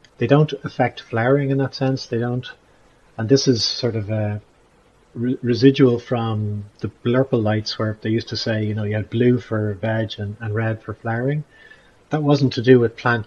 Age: 30-49